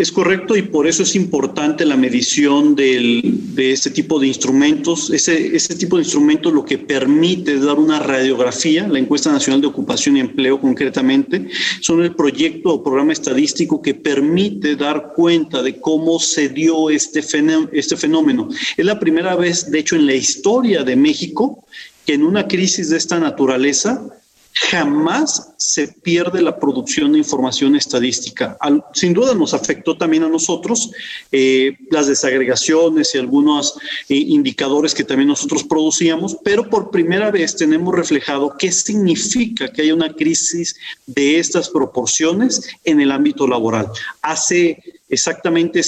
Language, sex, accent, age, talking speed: Spanish, male, Mexican, 40-59, 155 wpm